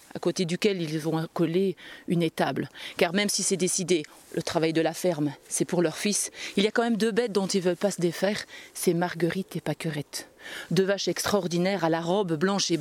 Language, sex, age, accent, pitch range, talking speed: French, female, 40-59, French, 170-210 Hz, 225 wpm